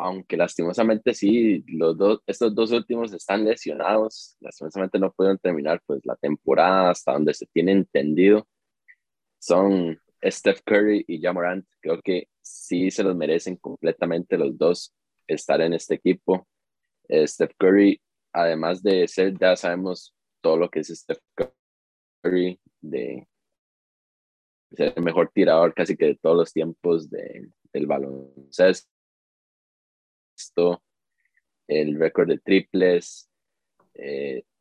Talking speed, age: 125 wpm, 20-39